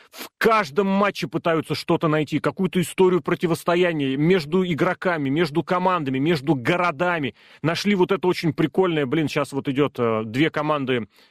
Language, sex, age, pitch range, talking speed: Russian, male, 30-49, 145-185 Hz, 140 wpm